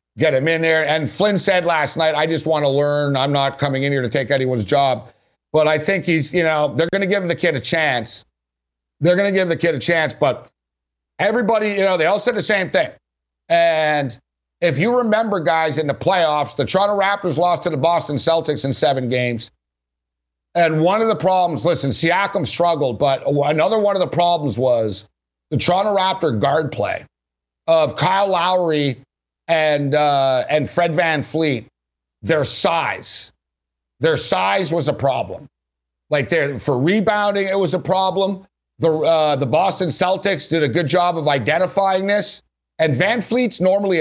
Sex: male